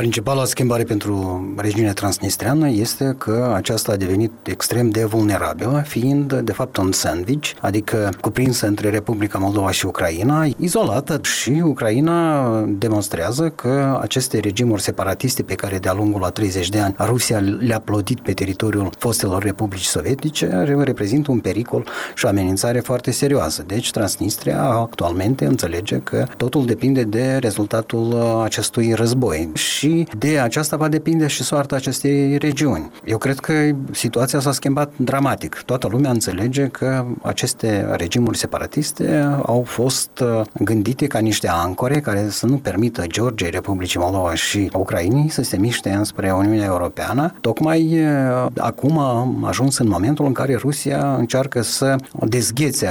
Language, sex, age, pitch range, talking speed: Romanian, male, 30-49, 105-140 Hz, 140 wpm